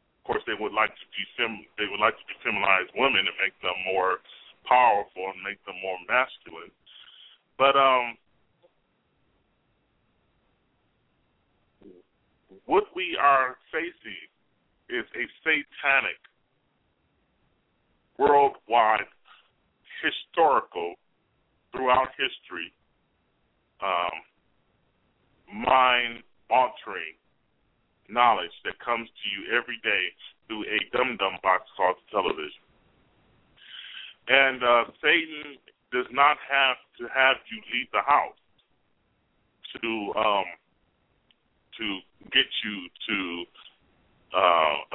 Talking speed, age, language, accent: 95 wpm, 40-59, English, American